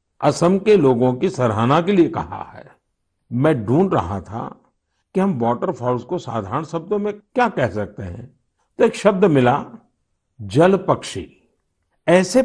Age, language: 50-69, Kannada